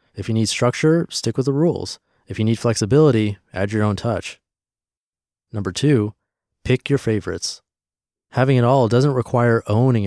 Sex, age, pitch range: male, 30-49, 100-130 Hz